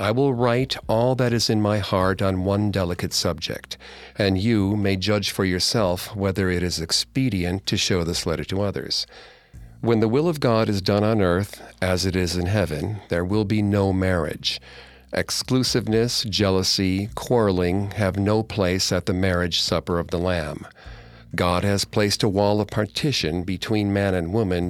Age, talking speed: 50-69, 175 wpm